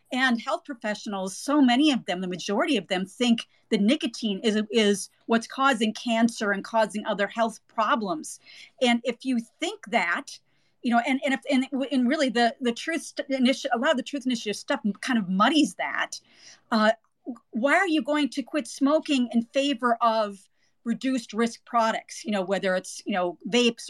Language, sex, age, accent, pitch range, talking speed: English, female, 40-59, American, 205-265 Hz, 180 wpm